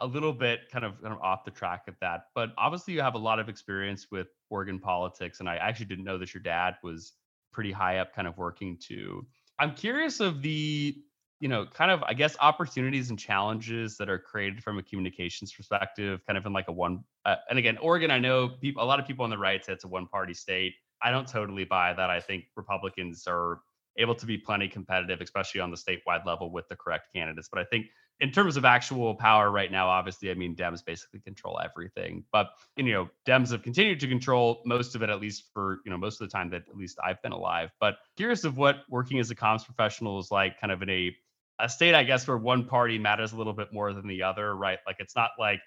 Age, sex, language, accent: 30-49, male, English, American